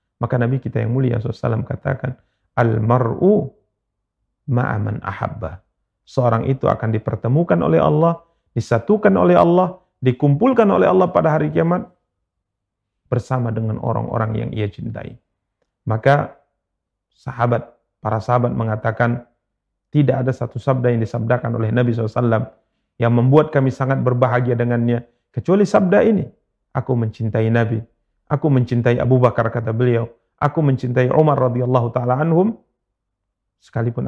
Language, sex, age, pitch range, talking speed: Indonesian, male, 40-59, 110-135 Hz, 125 wpm